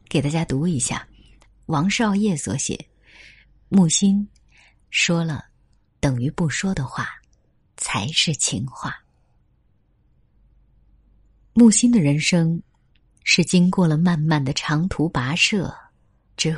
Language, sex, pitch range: Chinese, female, 145-195 Hz